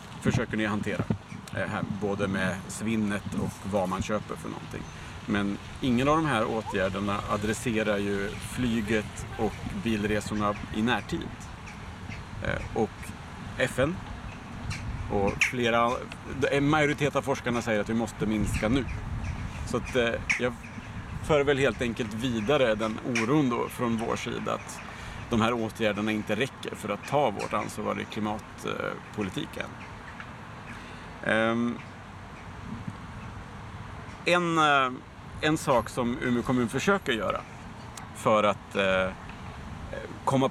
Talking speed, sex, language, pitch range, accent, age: 115 wpm, male, Swedish, 105-125 Hz, Norwegian, 40-59